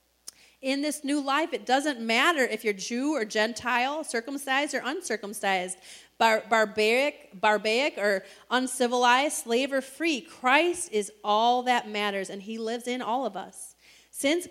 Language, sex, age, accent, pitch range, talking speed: English, female, 30-49, American, 205-255 Hz, 145 wpm